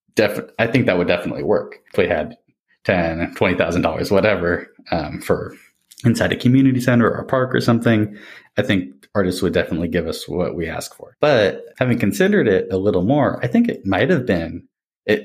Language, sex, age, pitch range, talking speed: English, male, 20-39, 95-115 Hz, 185 wpm